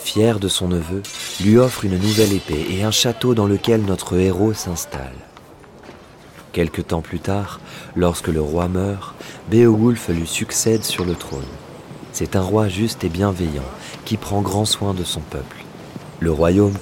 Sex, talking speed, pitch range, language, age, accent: male, 165 wpm, 85-105 Hz, French, 30-49, French